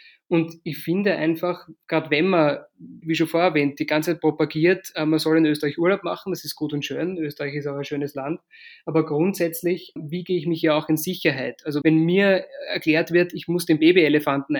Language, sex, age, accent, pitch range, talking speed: German, male, 20-39, German, 150-170 Hz, 205 wpm